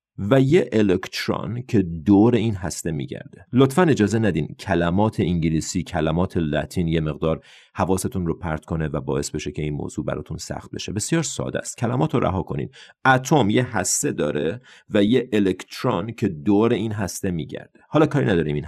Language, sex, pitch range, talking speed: Persian, male, 85-120 Hz, 170 wpm